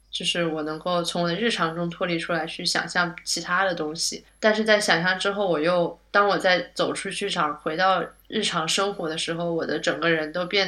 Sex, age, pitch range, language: female, 20-39, 165-190 Hz, Chinese